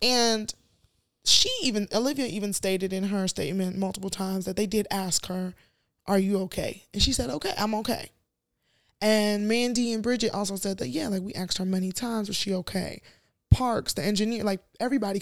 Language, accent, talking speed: English, American, 185 wpm